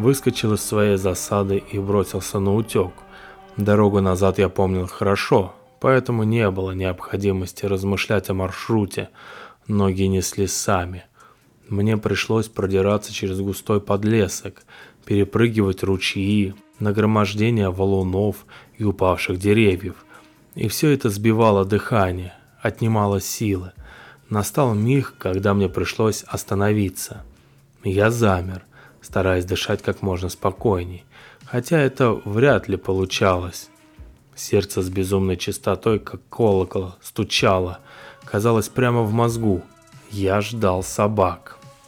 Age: 20-39